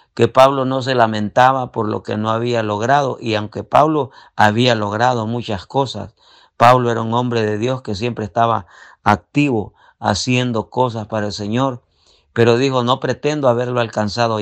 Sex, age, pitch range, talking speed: male, 50-69, 110-130 Hz, 160 wpm